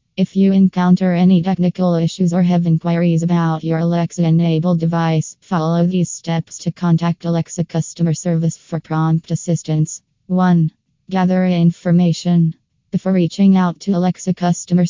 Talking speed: 135 wpm